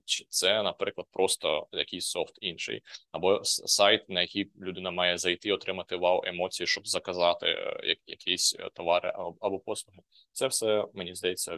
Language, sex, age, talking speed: Ukrainian, male, 20-39, 140 wpm